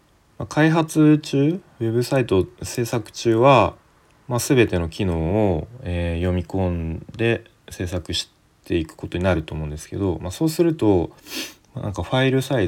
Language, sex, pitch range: Japanese, male, 90-125 Hz